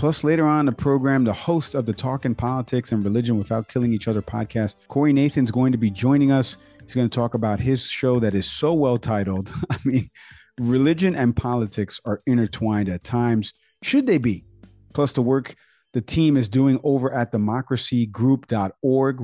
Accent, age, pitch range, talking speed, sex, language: American, 40-59, 105-130 Hz, 190 wpm, male, English